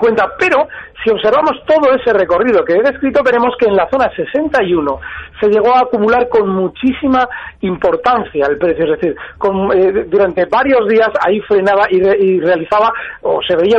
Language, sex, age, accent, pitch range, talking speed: Spanish, male, 40-59, Spanish, 195-270 Hz, 165 wpm